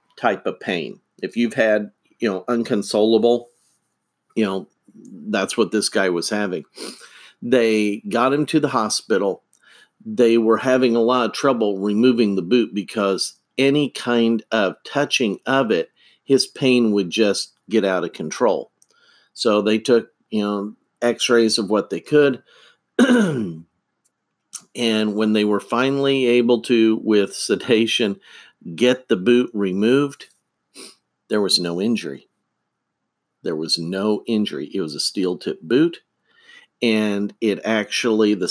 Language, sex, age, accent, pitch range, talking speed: English, male, 50-69, American, 105-130 Hz, 140 wpm